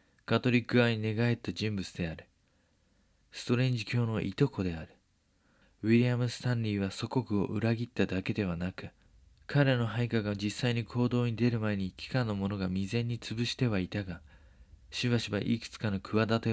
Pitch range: 95-115 Hz